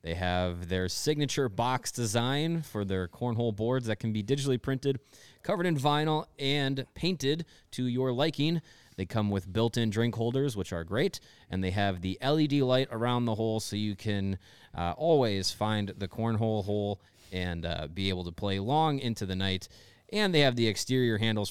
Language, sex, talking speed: English, male, 185 wpm